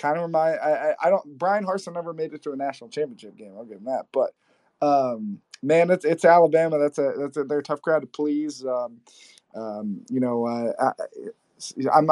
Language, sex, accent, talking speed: English, male, American, 215 wpm